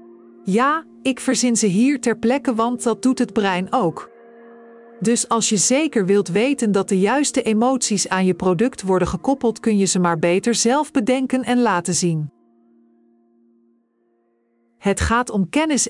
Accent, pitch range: Dutch, 185-250 Hz